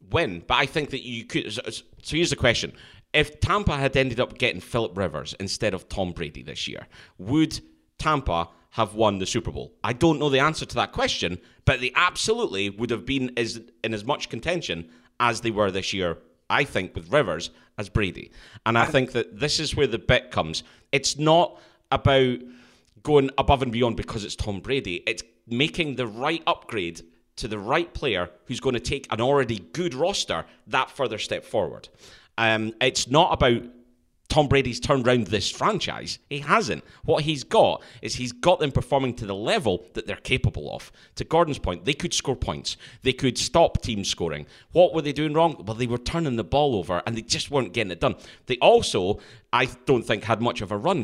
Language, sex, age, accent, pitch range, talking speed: English, male, 30-49, British, 105-140 Hz, 200 wpm